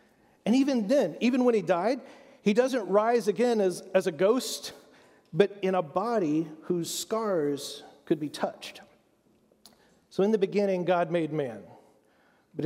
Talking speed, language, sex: 150 wpm, English, male